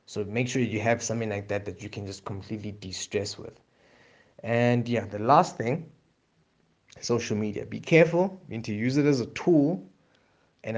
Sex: male